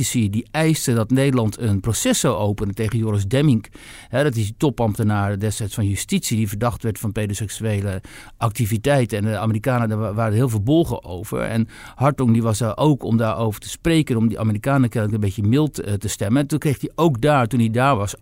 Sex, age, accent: male, 60-79, Dutch